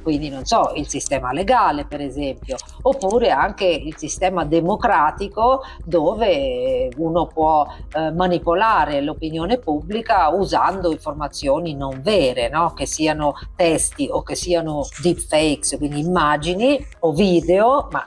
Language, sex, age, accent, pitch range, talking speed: Italian, female, 40-59, native, 145-190 Hz, 125 wpm